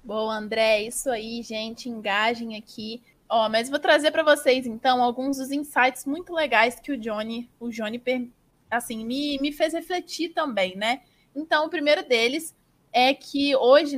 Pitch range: 235-285 Hz